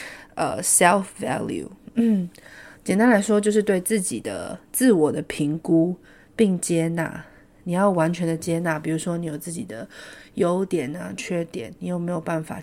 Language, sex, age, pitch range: Chinese, female, 30-49, 160-200 Hz